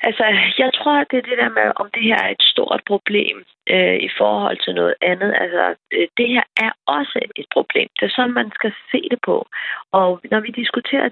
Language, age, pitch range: Danish, 30-49, 200-255 Hz